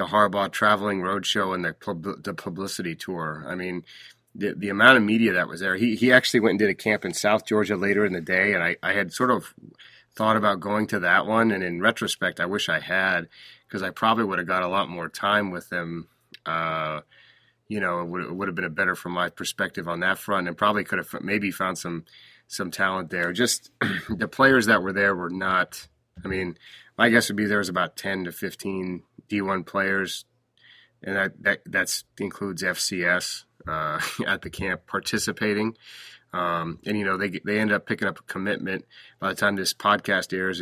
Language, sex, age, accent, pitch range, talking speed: English, male, 30-49, American, 90-105 Hz, 215 wpm